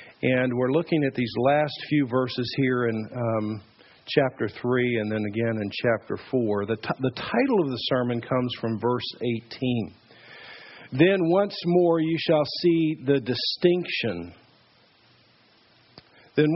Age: 50-69